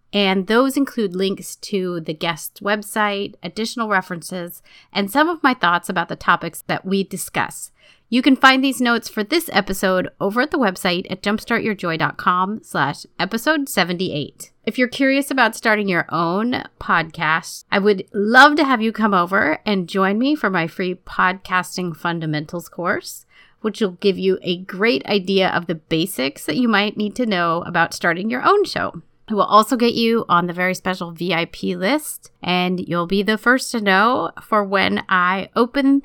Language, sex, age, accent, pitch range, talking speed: English, female, 30-49, American, 180-225 Hz, 175 wpm